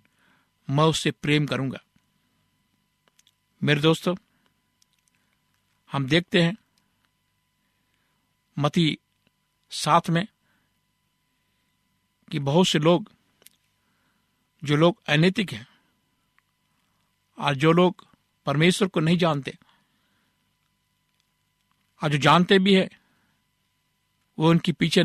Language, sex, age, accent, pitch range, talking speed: Hindi, male, 60-79, native, 145-180 Hz, 85 wpm